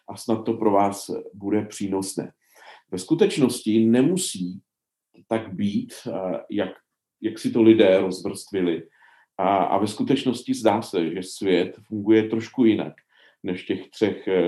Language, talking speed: Czech, 135 wpm